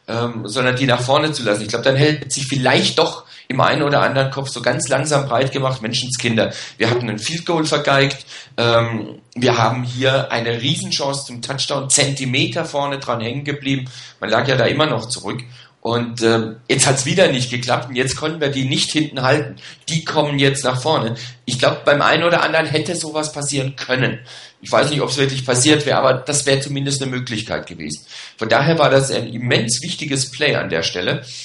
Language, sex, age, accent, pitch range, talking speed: German, male, 40-59, German, 120-145 Hz, 205 wpm